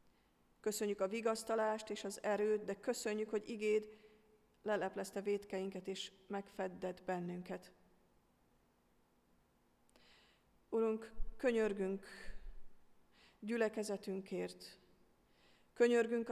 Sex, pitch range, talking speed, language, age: female, 180-210 Hz, 70 wpm, Hungarian, 40-59